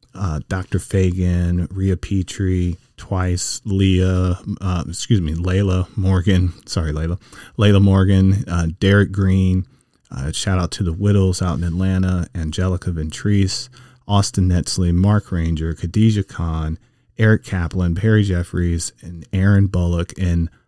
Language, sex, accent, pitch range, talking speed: English, male, American, 85-100 Hz, 130 wpm